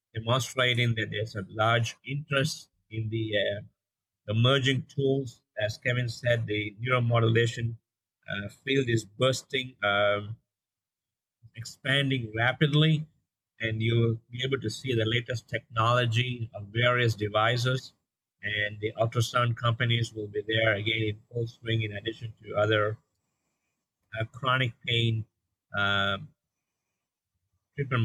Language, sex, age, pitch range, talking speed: English, male, 50-69, 105-125 Hz, 120 wpm